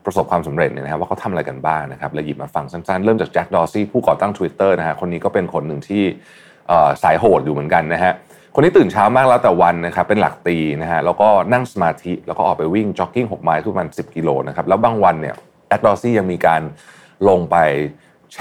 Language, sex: Thai, male